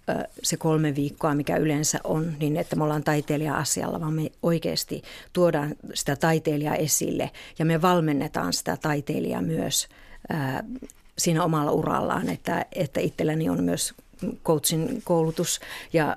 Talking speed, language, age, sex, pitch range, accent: 130 wpm, Finnish, 50-69, female, 150-165 Hz, native